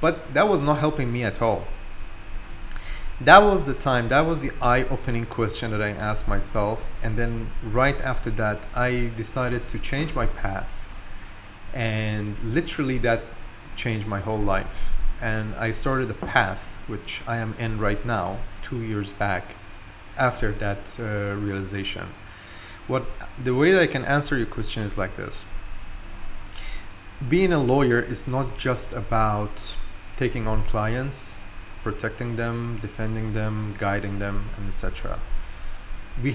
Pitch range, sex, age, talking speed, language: 100-120 Hz, male, 30-49, 145 wpm, English